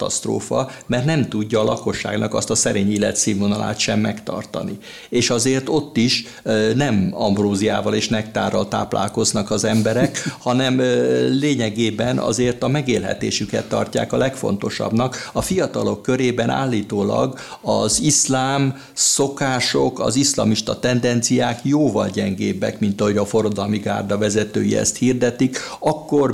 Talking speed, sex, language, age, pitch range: 120 wpm, male, Hungarian, 60-79, 105-130 Hz